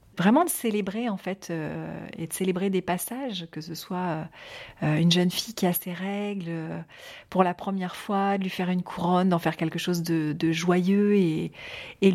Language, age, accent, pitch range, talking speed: French, 30-49, French, 170-210 Hz, 200 wpm